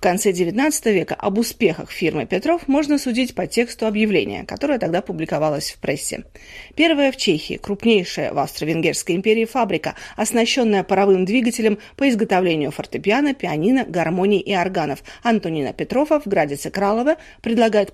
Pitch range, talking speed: 170-250 Hz, 140 wpm